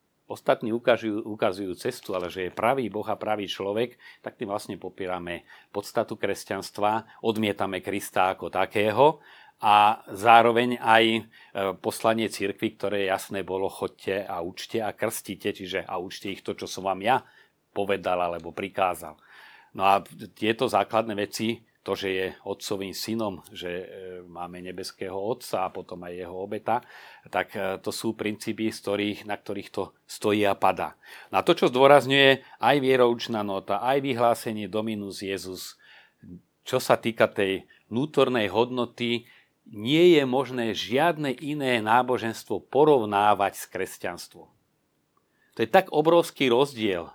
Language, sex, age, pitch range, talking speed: Slovak, male, 40-59, 95-115 Hz, 135 wpm